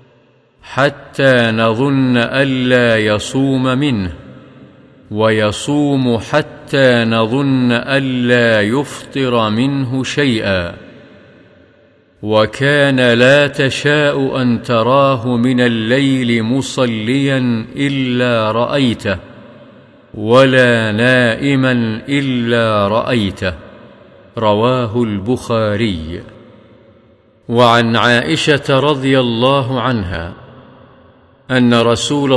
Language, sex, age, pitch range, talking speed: Arabic, male, 50-69, 115-135 Hz, 65 wpm